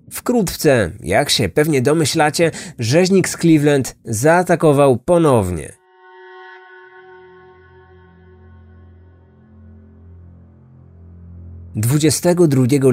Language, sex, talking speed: Polish, male, 50 wpm